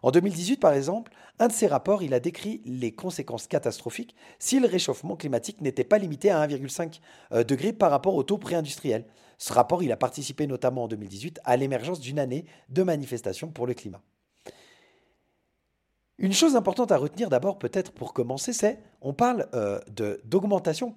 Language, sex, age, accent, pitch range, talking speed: French, male, 30-49, French, 120-195 Hz, 175 wpm